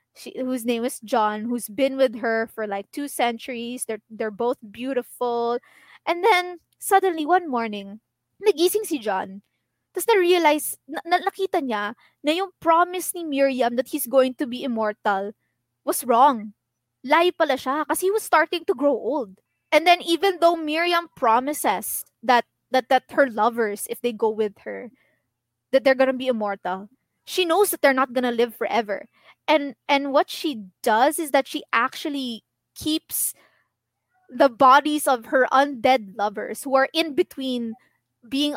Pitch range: 235-305 Hz